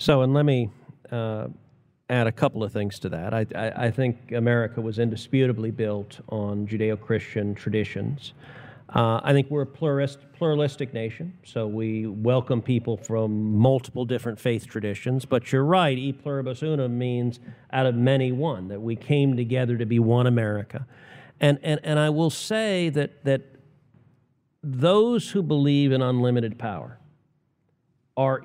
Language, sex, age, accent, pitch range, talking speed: English, male, 50-69, American, 115-140 Hz, 155 wpm